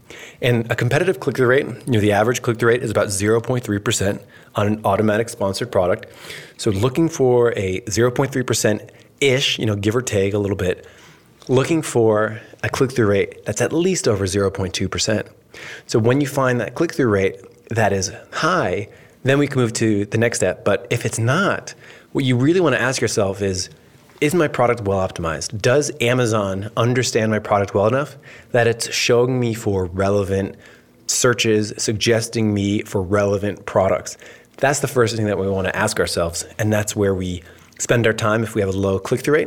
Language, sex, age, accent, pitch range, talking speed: English, male, 30-49, American, 100-125 Hz, 185 wpm